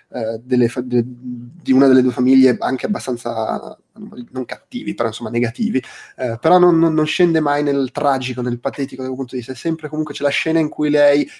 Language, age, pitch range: Italian, 20-39, 120-155 Hz